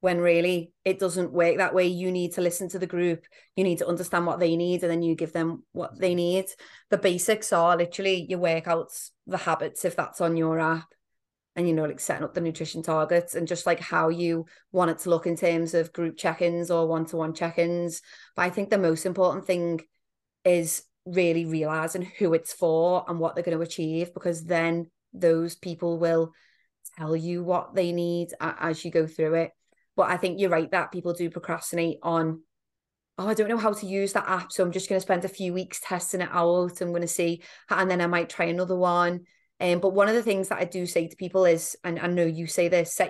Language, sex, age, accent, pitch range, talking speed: English, female, 30-49, British, 165-180 Hz, 235 wpm